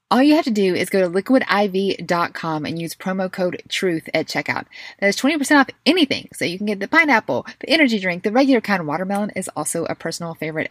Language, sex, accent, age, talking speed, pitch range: English, female, American, 20-39, 220 wpm, 165-215 Hz